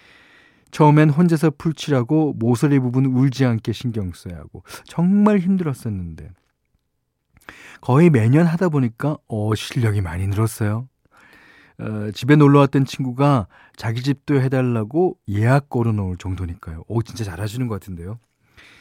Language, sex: Korean, male